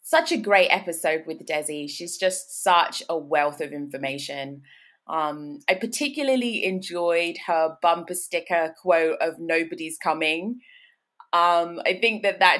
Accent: British